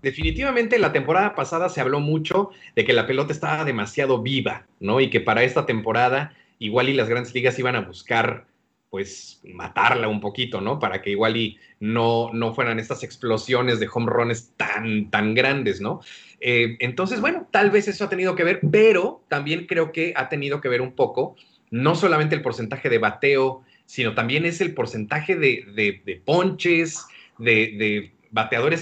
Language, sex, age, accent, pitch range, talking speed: Spanish, male, 30-49, Mexican, 120-165 Hz, 180 wpm